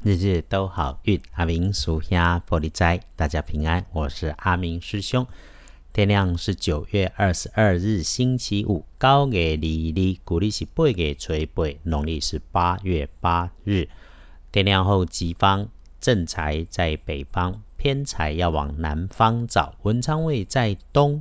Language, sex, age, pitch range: Chinese, male, 50-69, 75-100 Hz